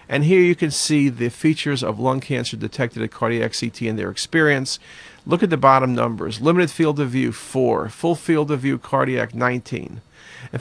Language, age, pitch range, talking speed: English, 40-59, 120-155 Hz, 190 wpm